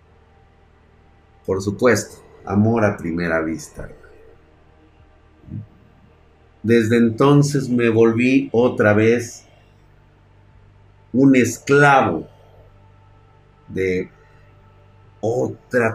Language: Spanish